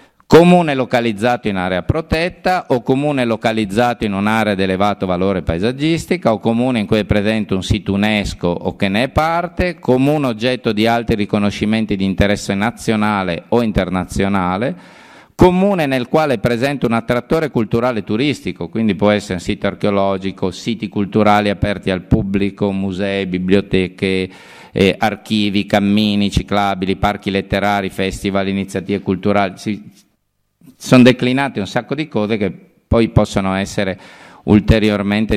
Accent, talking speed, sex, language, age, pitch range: native, 135 wpm, male, Italian, 50-69, 95-120 Hz